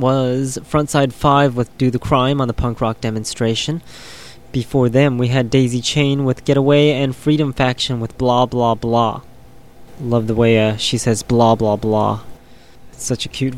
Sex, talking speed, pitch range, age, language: male, 170 wpm, 115-135 Hz, 20-39, English